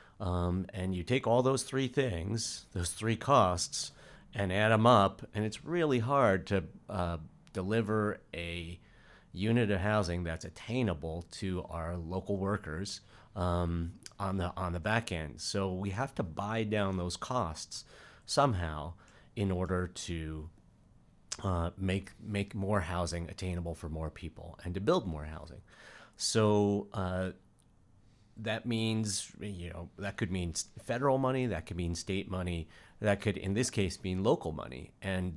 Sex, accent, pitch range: male, American, 85-110 Hz